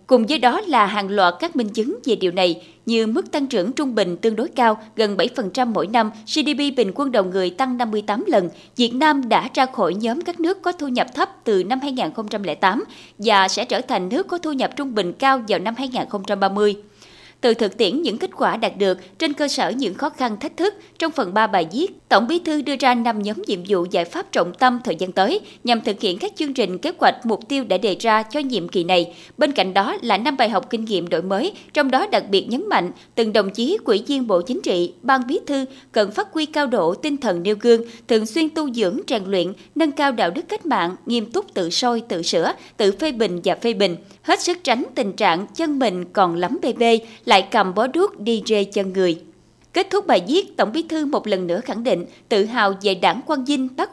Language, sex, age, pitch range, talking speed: Vietnamese, female, 20-39, 200-290 Hz, 240 wpm